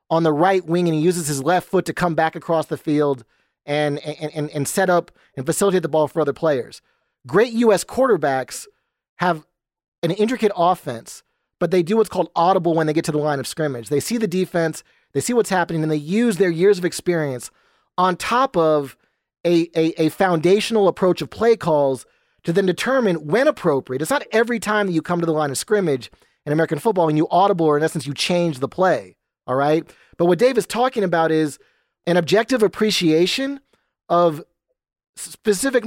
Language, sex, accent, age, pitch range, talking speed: English, male, American, 30-49, 155-205 Hz, 200 wpm